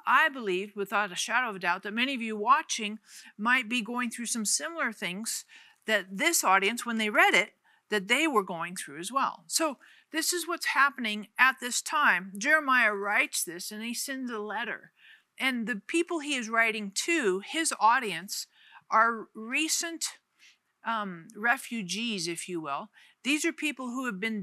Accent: American